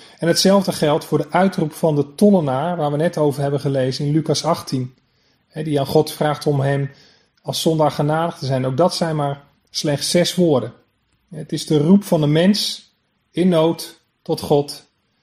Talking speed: 185 wpm